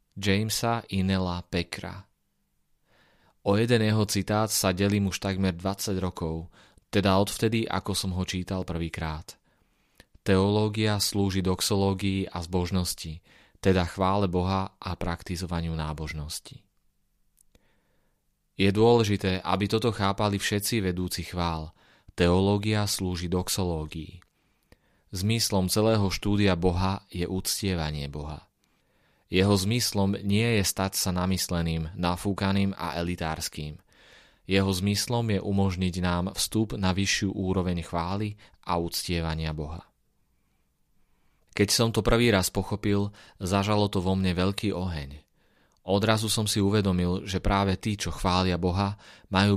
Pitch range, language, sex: 90-100 Hz, Slovak, male